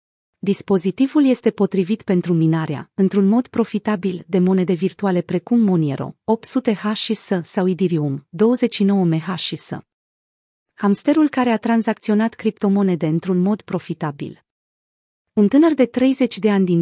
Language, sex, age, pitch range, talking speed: Romanian, female, 30-49, 170-220 Hz, 120 wpm